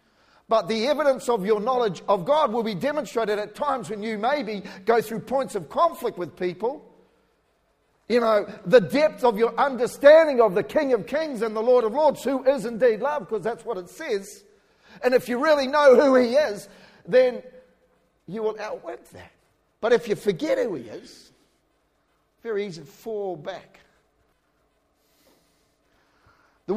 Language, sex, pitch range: English, male, 205-265 Hz